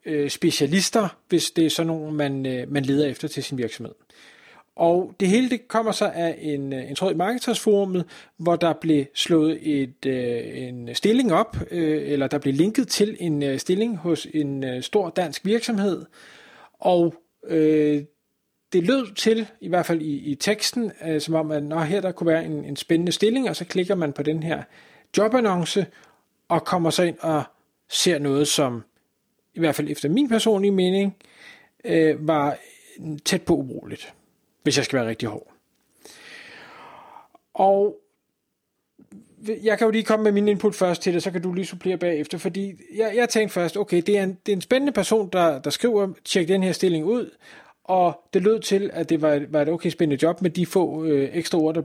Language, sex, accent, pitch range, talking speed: Danish, male, native, 155-210 Hz, 185 wpm